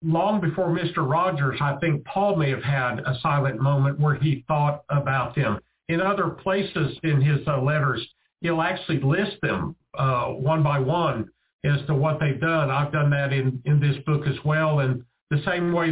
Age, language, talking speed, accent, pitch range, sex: 50-69, English, 190 wpm, American, 140-160 Hz, male